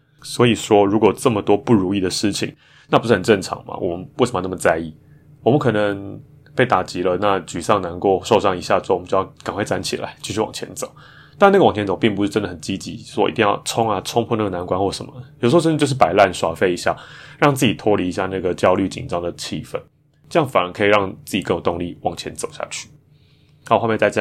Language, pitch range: Chinese, 95-130 Hz